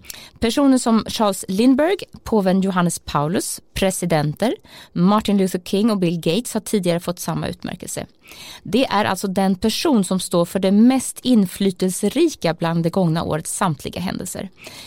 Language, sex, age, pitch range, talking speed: Swedish, female, 20-39, 180-230 Hz, 145 wpm